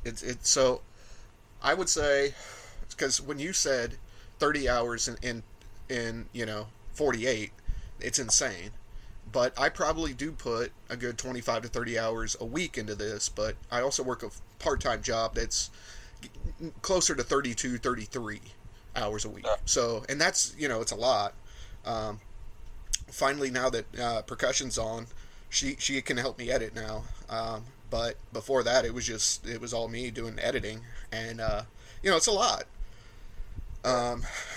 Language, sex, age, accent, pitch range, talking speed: English, male, 30-49, American, 105-125 Hz, 160 wpm